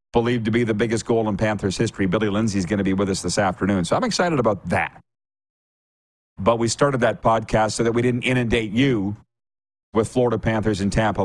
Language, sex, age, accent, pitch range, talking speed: English, male, 40-59, American, 100-125 Hz, 215 wpm